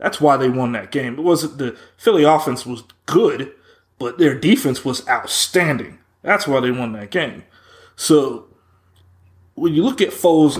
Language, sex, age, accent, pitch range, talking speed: English, male, 20-39, American, 125-150 Hz, 170 wpm